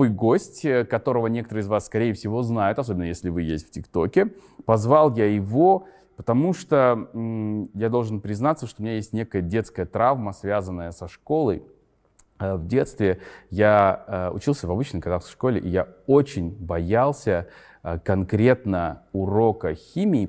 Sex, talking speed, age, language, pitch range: male, 140 wpm, 20-39, Russian, 95-120 Hz